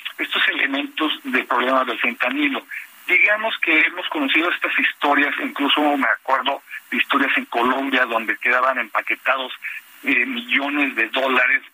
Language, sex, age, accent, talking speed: Spanish, male, 50-69, Mexican, 135 wpm